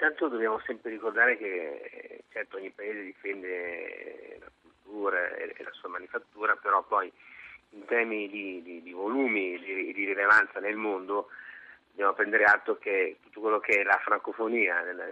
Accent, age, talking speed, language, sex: native, 30-49, 160 wpm, Italian, male